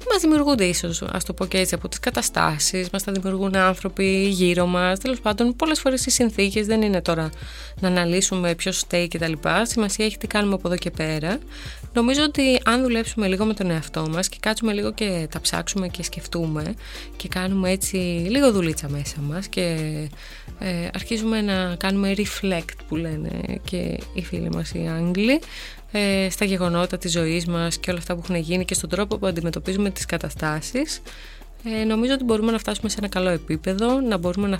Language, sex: Greek, female